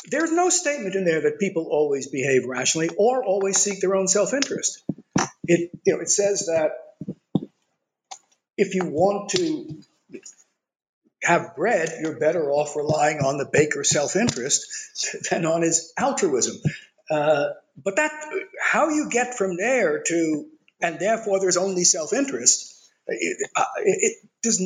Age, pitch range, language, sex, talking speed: 50-69, 155-225 Hz, English, male, 140 wpm